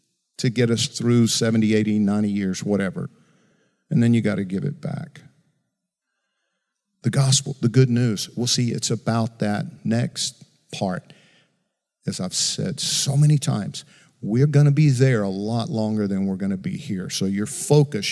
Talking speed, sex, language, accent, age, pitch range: 170 wpm, male, English, American, 50-69, 110-150 Hz